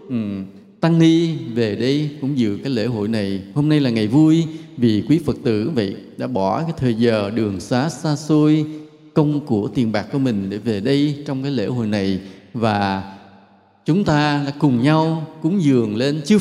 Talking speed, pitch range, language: 200 wpm, 115-160 Hz, Vietnamese